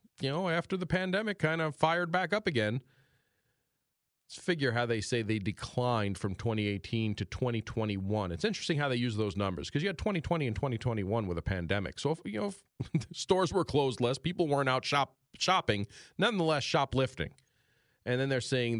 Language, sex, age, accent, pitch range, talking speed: English, male, 40-59, American, 100-135 Hz, 175 wpm